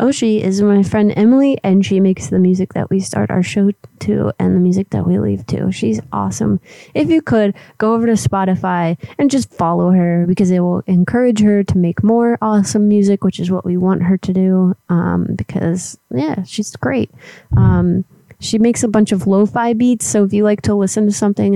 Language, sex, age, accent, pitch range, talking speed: English, female, 20-39, American, 175-215 Hz, 210 wpm